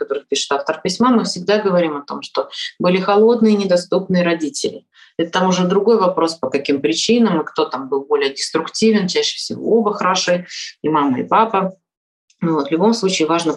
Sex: female